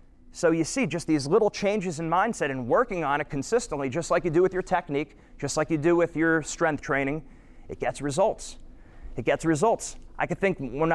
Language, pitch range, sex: English, 140-180 Hz, male